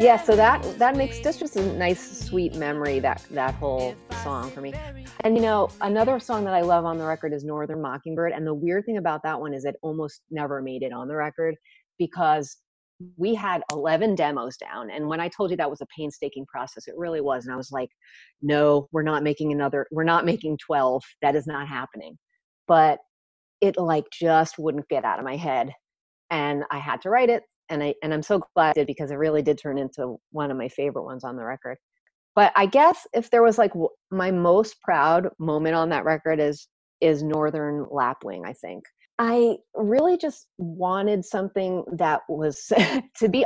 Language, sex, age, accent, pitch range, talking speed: English, female, 30-49, American, 145-195 Hz, 210 wpm